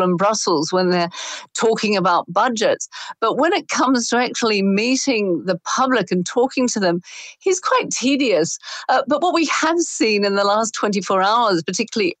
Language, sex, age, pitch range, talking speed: English, female, 50-69, 180-230 Hz, 170 wpm